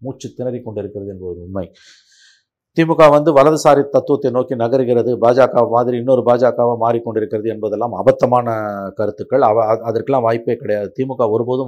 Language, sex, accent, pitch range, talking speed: Tamil, male, native, 105-130 Hz, 130 wpm